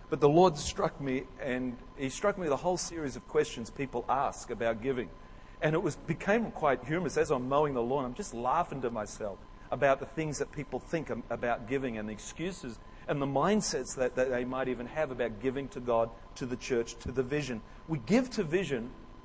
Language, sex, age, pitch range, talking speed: English, male, 40-59, 125-155 Hz, 210 wpm